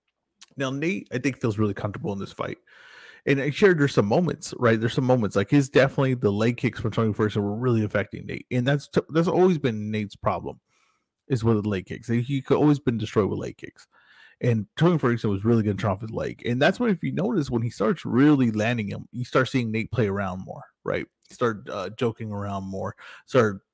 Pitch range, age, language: 110-135 Hz, 20-39, English